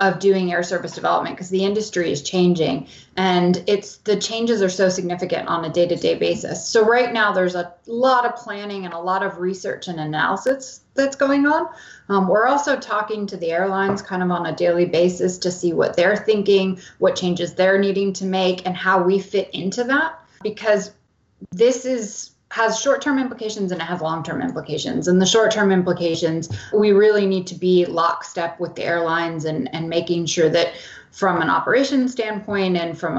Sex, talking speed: female, 190 wpm